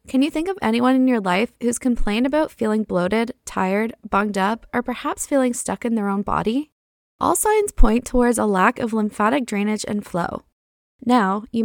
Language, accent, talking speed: English, American, 190 wpm